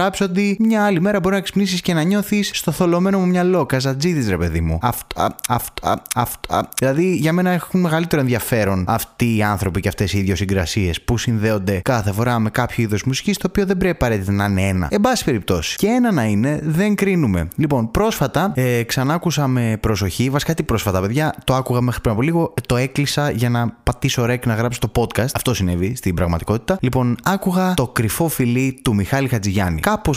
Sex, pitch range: male, 105-155 Hz